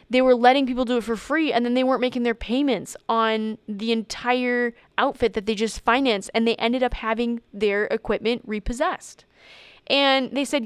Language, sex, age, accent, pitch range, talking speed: English, female, 10-29, American, 205-250 Hz, 190 wpm